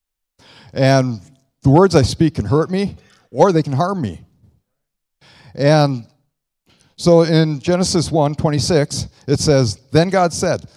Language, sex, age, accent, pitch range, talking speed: English, male, 50-69, American, 110-145 Hz, 130 wpm